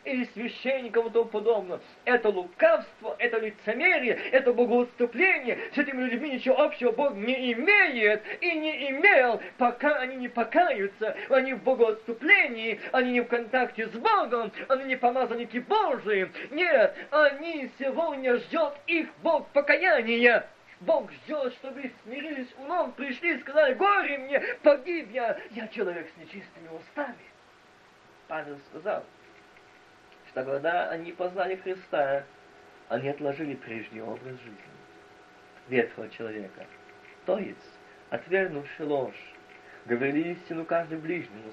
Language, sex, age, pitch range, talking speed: Russian, male, 20-39, 170-270 Hz, 125 wpm